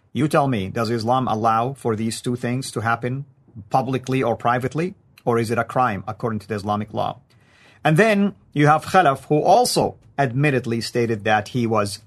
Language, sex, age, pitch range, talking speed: English, male, 40-59, 120-180 Hz, 185 wpm